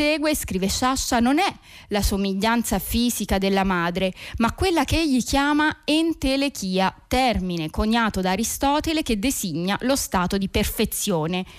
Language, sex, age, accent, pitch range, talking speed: Italian, female, 20-39, native, 200-275 Hz, 135 wpm